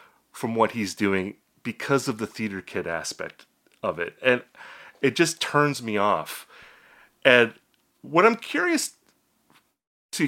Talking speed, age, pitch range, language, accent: 135 wpm, 30-49, 100-140 Hz, English, American